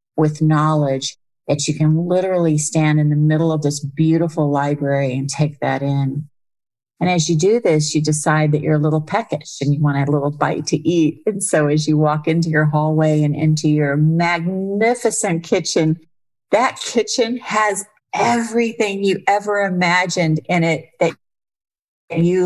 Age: 40-59